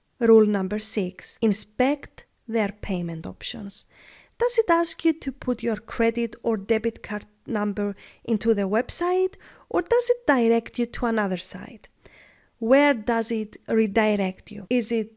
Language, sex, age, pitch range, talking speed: English, female, 30-49, 200-265 Hz, 145 wpm